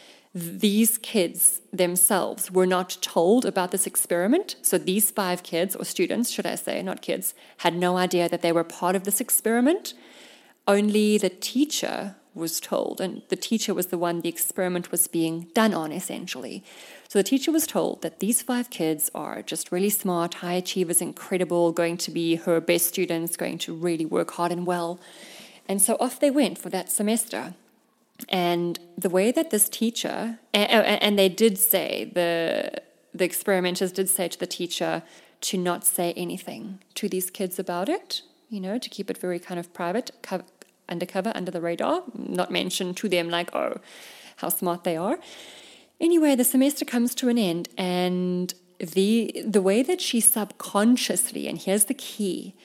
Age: 30-49